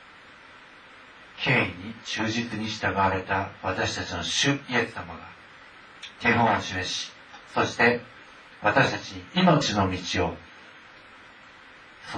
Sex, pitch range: male, 90-110 Hz